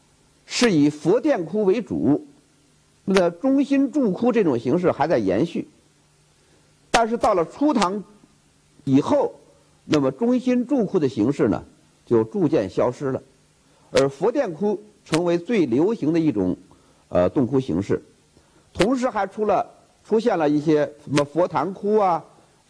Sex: male